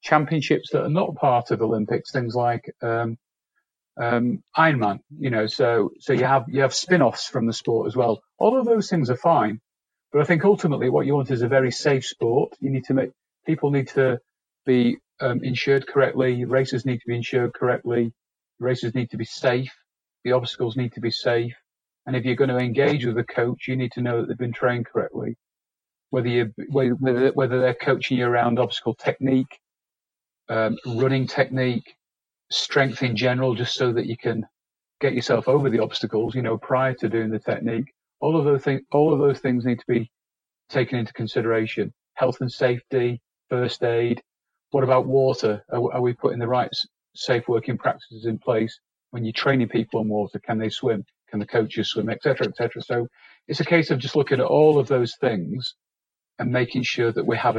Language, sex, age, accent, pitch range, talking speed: English, male, 40-59, British, 120-135 Hz, 195 wpm